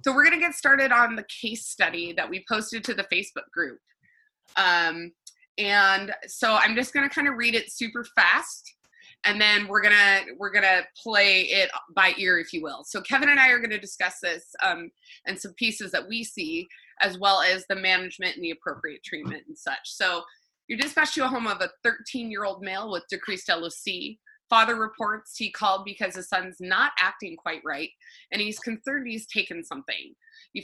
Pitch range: 195-270 Hz